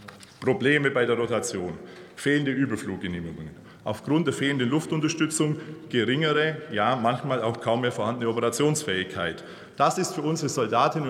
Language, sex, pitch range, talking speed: German, male, 115-140 Hz, 125 wpm